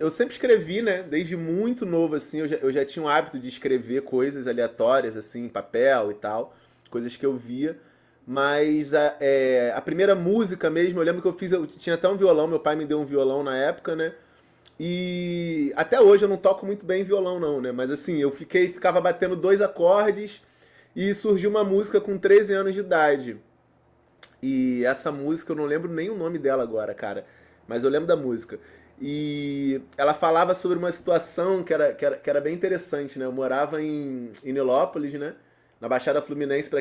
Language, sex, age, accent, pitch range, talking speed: Portuguese, male, 20-39, Brazilian, 135-185 Hz, 200 wpm